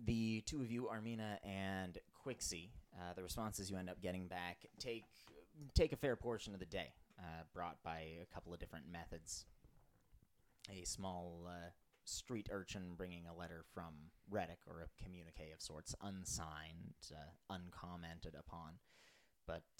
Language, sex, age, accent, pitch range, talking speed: English, male, 30-49, American, 85-100 Hz, 155 wpm